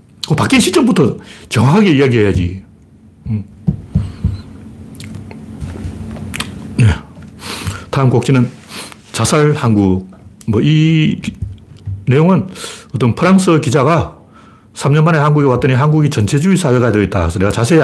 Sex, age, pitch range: male, 40-59, 105-155 Hz